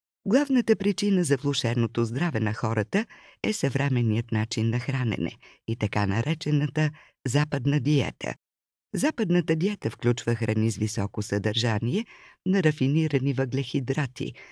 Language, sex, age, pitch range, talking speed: Bulgarian, female, 50-69, 105-160 Hz, 110 wpm